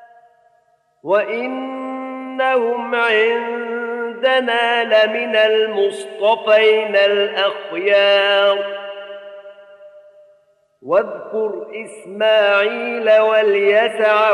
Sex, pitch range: male, 200-235 Hz